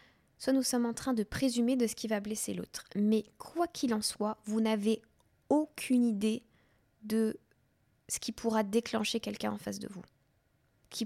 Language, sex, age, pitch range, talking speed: French, female, 20-39, 200-245 Hz, 180 wpm